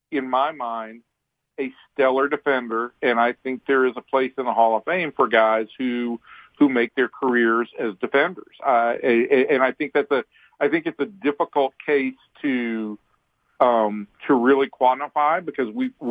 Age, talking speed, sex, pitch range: 50-69, 175 wpm, male, 120-170 Hz